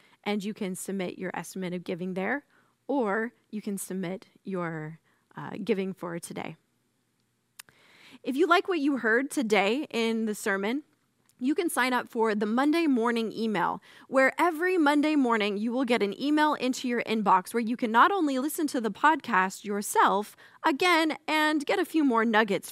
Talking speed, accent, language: 175 wpm, American, English